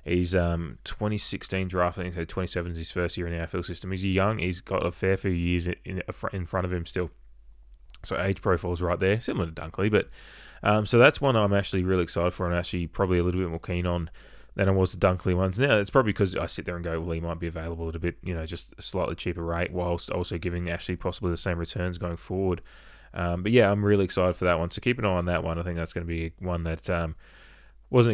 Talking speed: 260 wpm